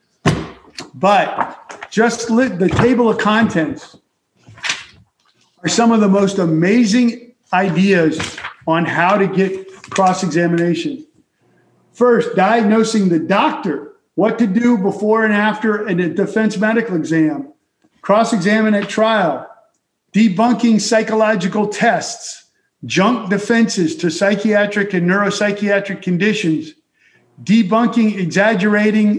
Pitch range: 180-225 Hz